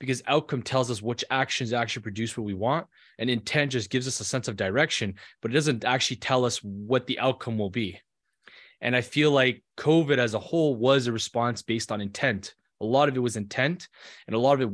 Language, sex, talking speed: English, male, 230 wpm